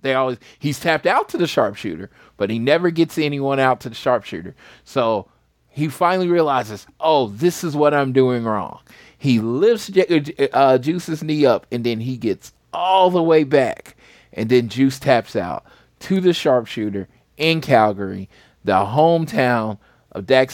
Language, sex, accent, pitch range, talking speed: English, male, American, 105-140 Hz, 165 wpm